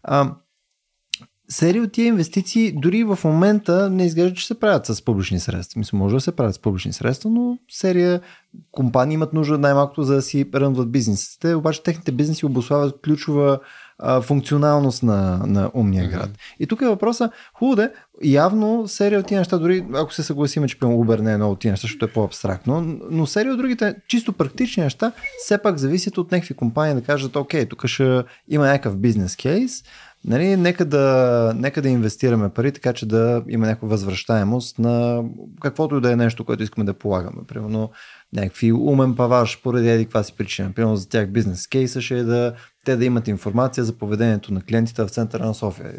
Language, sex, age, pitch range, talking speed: Bulgarian, male, 20-39, 110-165 Hz, 190 wpm